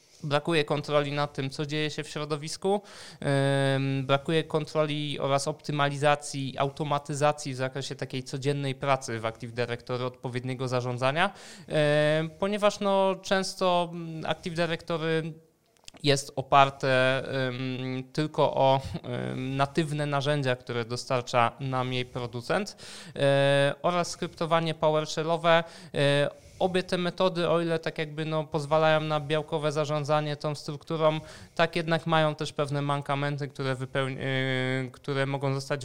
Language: Polish